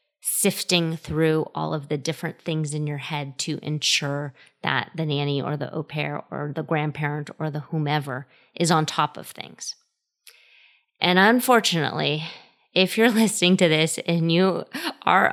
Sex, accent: female, American